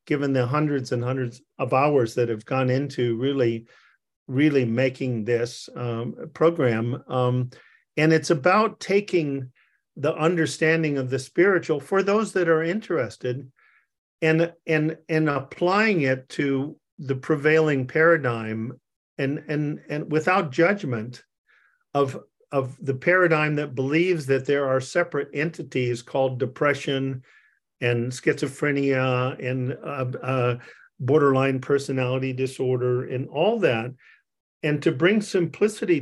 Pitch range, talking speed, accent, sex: 125-160 Hz, 120 wpm, American, male